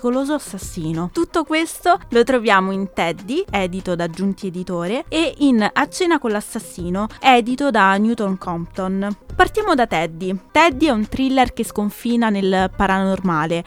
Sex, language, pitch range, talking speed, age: female, Italian, 190-250 Hz, 140 wpm, 20-39